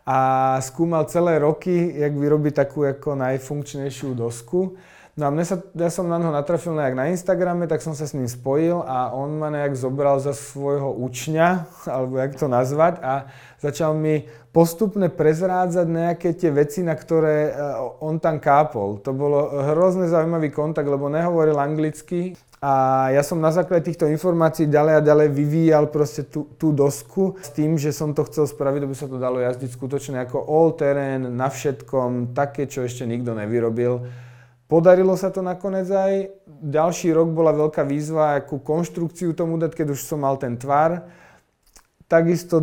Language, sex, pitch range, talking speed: Slovak, male, 130-160 Hz, 165 wpm